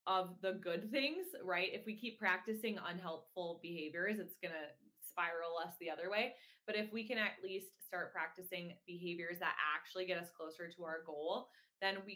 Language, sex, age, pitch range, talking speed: English, female, 20-39, 170-205 Hz, 190 wpm